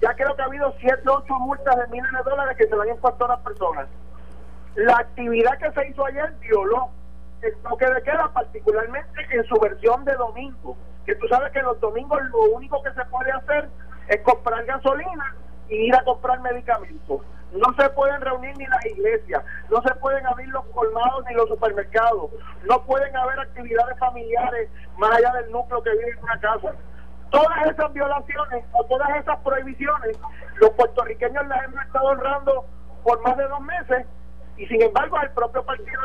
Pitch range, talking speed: 235-275 Hz, 185 wpm